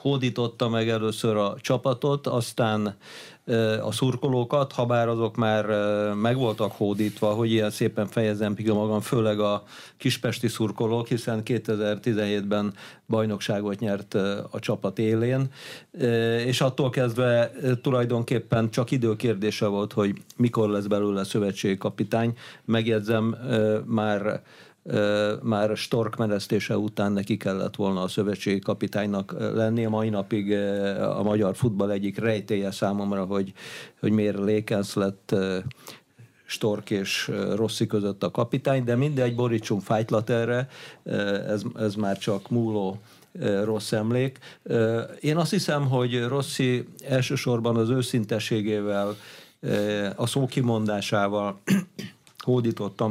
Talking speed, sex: 115 wpm, male